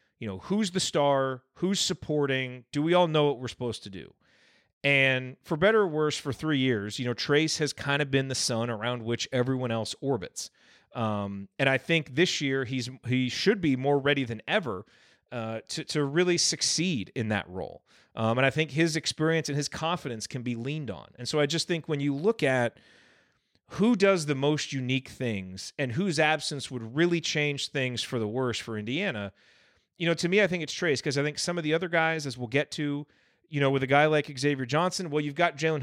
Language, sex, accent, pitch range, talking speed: English, male, American, 120-155 Hz, 220 wpm